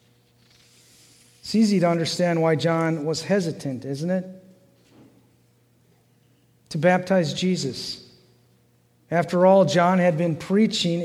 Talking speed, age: 105 wpm, 50-69